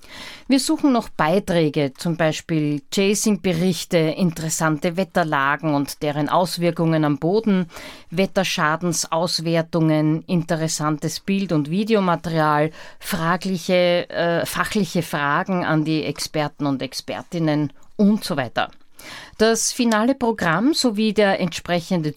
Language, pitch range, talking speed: German, 155-205 Hz, 105 wpm